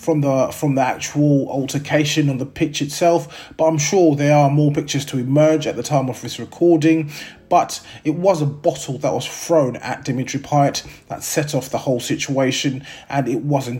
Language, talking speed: English, 200 wpm